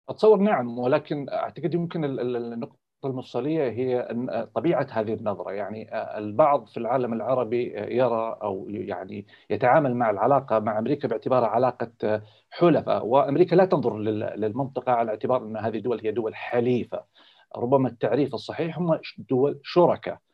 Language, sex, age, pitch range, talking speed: Arabic, male, 40-59, 115-155 Hz, 135 wpm